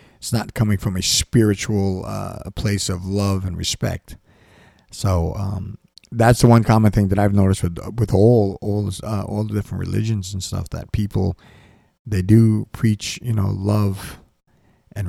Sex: male